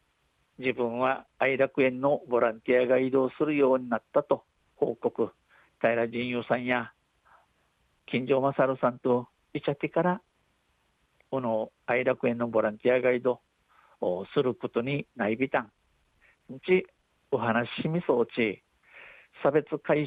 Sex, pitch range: male, 120-145 Hz